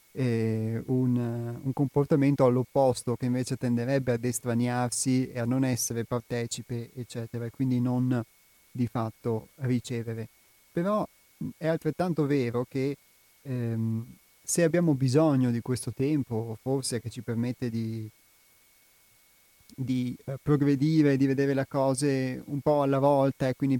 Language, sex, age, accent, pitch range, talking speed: Italian, male, 30-49, native, 115-135 Hz, 130 wpm